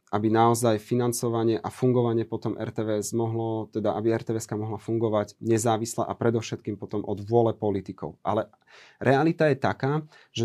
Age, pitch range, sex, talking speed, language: 30-49, 110-125 Hz, male, 145 wpm, Slovak